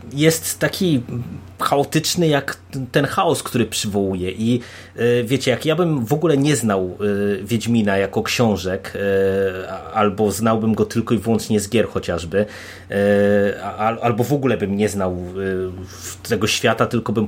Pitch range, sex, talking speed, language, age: 100-125 Hz, male, 135 wpm, Polish, 30-49